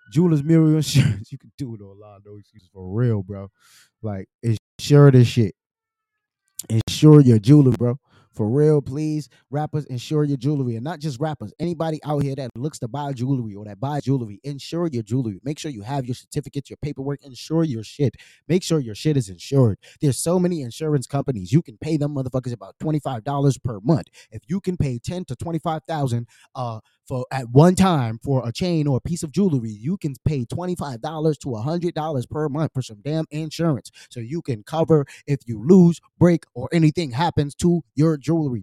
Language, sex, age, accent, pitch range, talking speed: English, male, 20-39, American, 115-160 Hz, 195 wpm